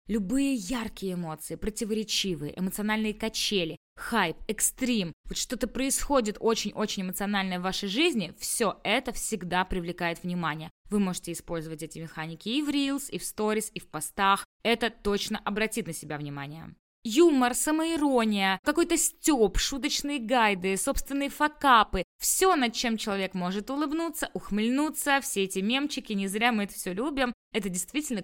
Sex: female